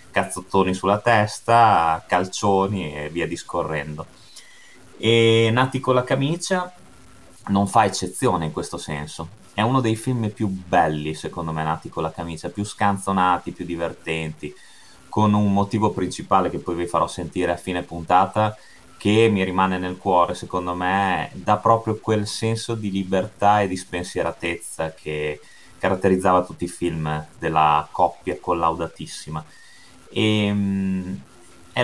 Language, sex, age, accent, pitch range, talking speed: Italian, male, 30-49, native, 85-110 Hz, 140 wpm